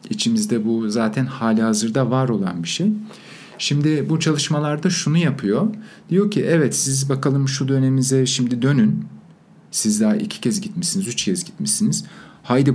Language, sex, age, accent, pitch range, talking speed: Turkish, male, 50-69, native, 130-200 Hz, 145 wpm